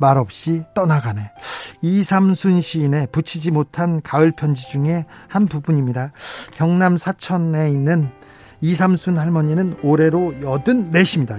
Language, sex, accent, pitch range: Korean, male, native, 145-185 Hz